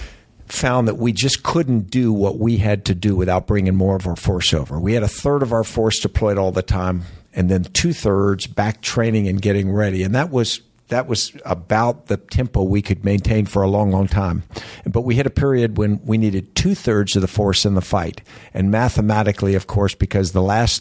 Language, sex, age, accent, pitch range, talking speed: English, male, 50-69, American, 95-110 Hz, 215 wpm